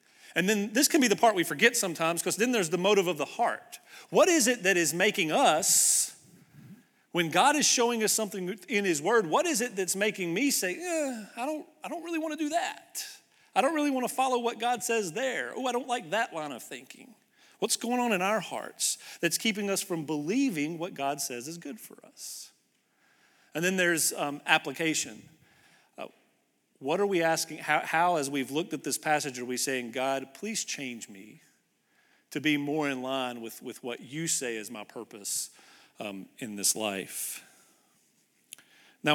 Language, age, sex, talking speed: English, 40-59, male, 200 wpm